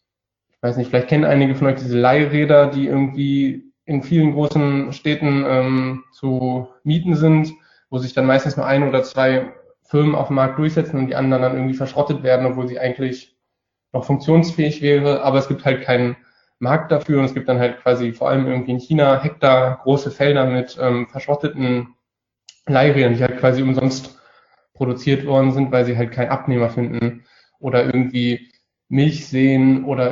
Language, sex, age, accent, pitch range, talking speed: German, male, 10-29, German, 125-140 Hz, 175 wpm